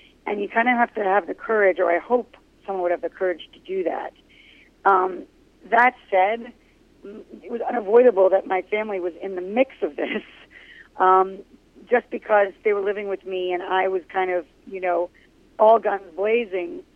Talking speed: 190 wpm